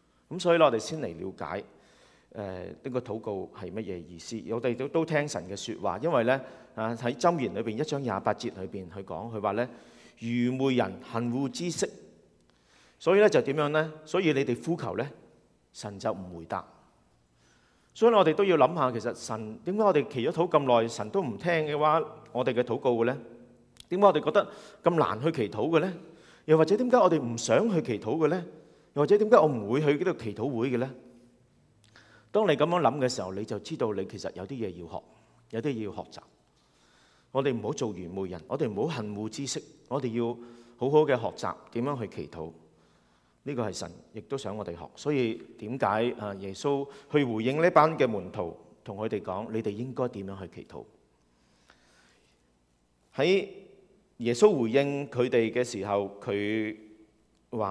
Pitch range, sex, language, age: 100-150 Hz, male, Chinese, 40-59